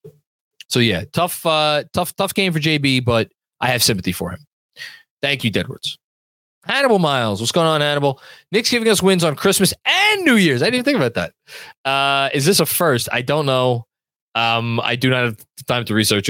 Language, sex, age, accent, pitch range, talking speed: English, male, 20-39, American, 115-155 Hz, 200 wpm